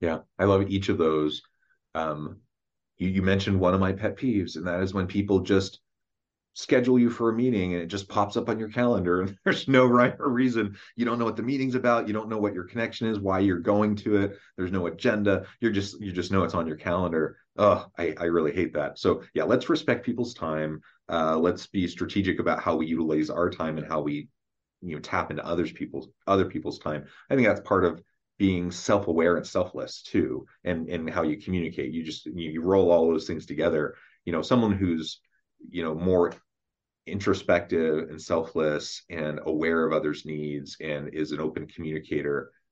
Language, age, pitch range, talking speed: English, 30-49, 80-100 Hz, 210 wpm